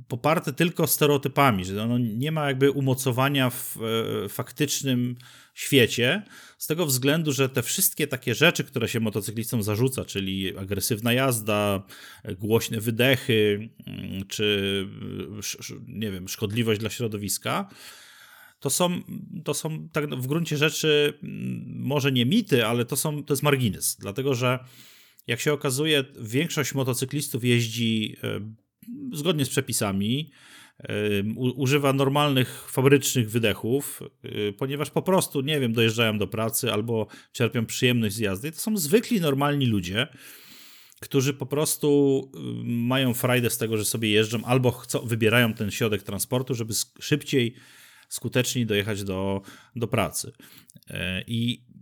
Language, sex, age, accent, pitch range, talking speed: Polish, male, 40-59, native, 110-145 Hz, 125 wpm